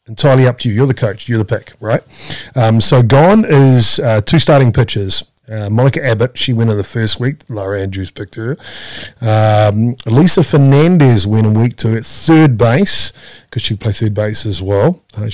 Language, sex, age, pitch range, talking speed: English, male, 40-59, 105-130 Hz, 195 wpm